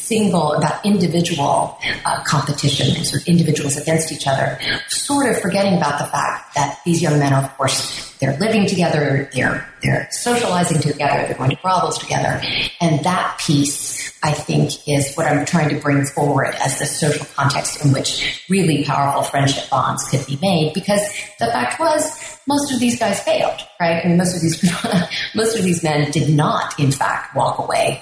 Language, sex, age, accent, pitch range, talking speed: English, female, 30-49, American, 140-180 Hz, 185 wpm